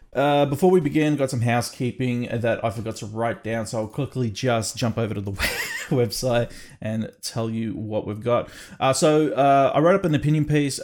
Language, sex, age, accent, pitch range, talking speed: English, male, 20-39, Australian, 110-135 Hz, 200 wpm